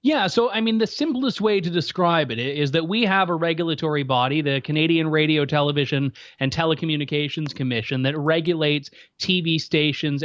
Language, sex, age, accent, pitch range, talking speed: English, male, 30-49, American, 155-195 Hz, 165 wpm